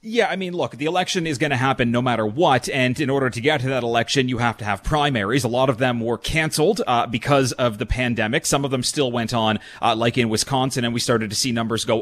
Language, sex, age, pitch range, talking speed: English, male, 30-49, 120-150 Hz, 270 wpm